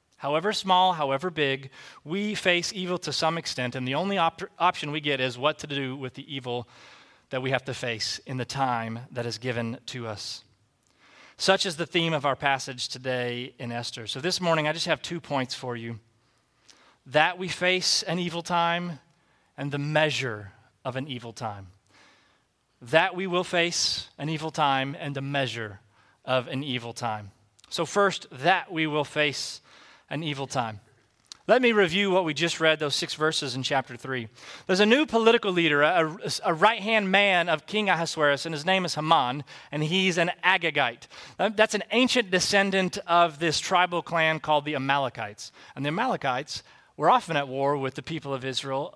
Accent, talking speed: American, 185 wpm